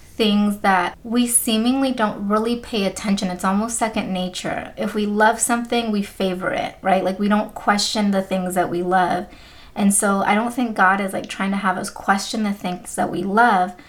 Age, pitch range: 30-49, 190-230 Hz